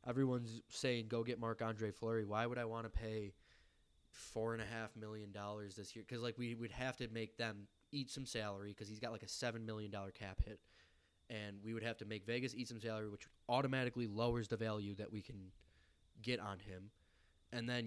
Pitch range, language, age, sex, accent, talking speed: 105-125 Hz, English, 20-39, male, American, 200 wpm